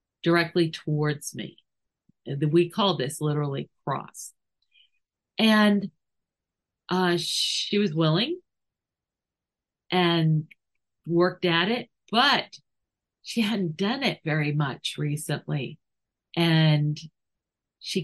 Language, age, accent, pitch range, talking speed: English, 40-59, American, 155-190 Hz, 90 wpm